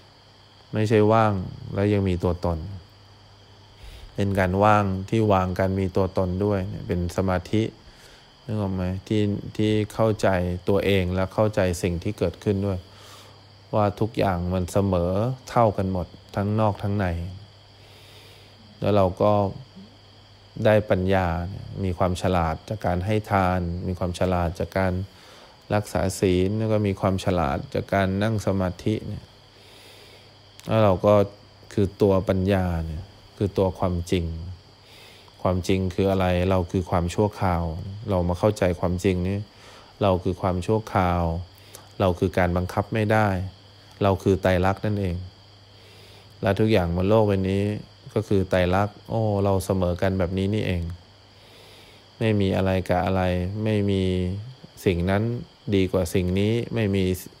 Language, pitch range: English, 95-105 Hz